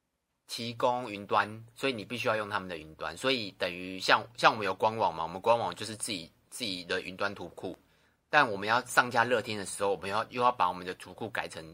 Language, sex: Chinese, male